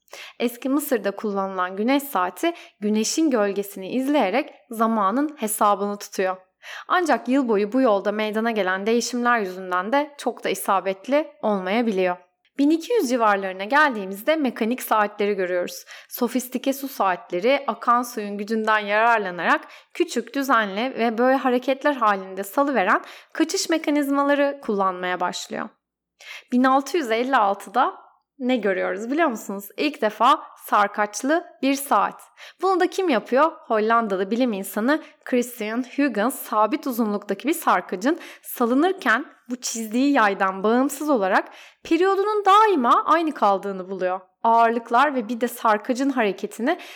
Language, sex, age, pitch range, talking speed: Turkish, female, 10-29, 205-290 Hz, 115 wpm